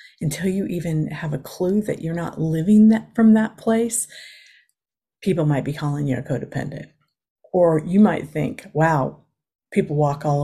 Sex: female